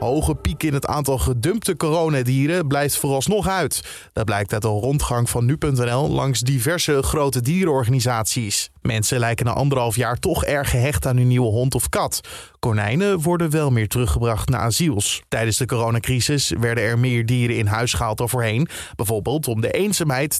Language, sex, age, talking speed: Dutch, male, 20-39, 170 wpm